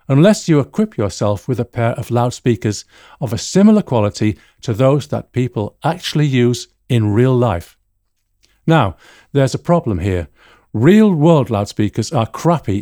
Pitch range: 105-150 Hz